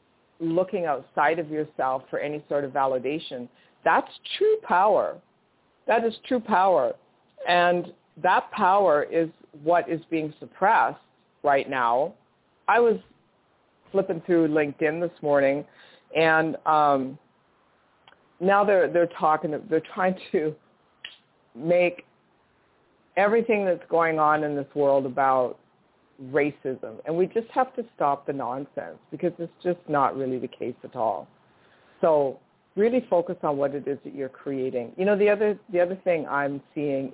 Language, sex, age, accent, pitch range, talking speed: English, female, 50-69, American, 145-185 Hz, 140 wpm